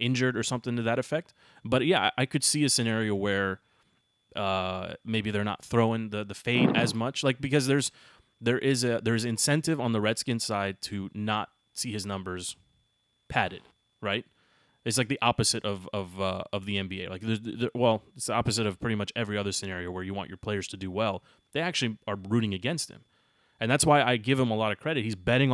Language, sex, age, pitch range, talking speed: English, male, 30-49, 105-130 Hz, 215 wpm